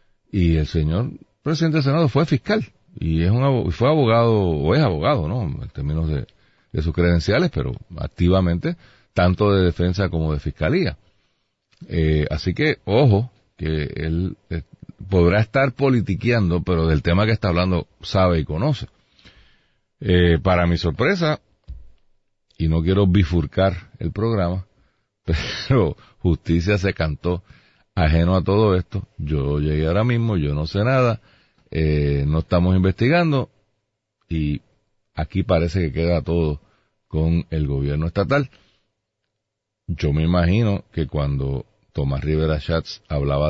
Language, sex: Spanish, male